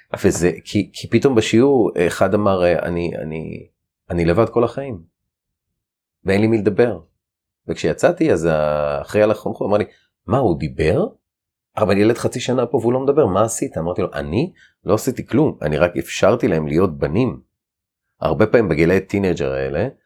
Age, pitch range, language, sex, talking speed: 30-49, 80-105 Hz, Hebrew, male, 160 wpm